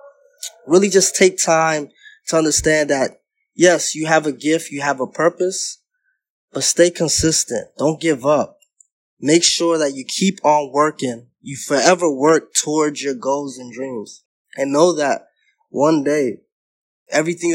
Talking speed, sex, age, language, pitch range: 145 wpm, male, 20-39, English, 145-190 Hz